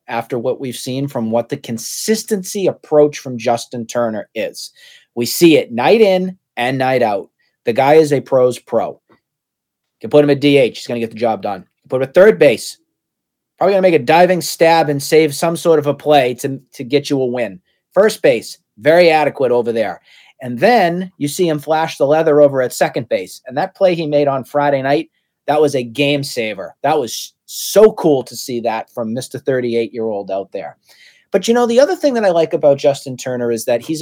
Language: English